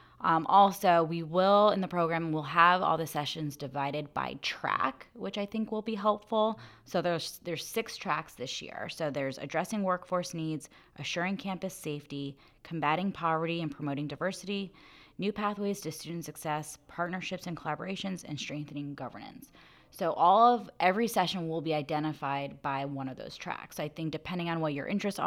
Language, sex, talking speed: English, female, 170 wpm